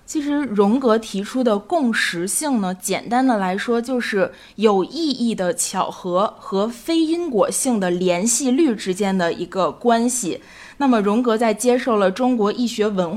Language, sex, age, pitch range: Chinese, female, 20-39, 195-255 Hz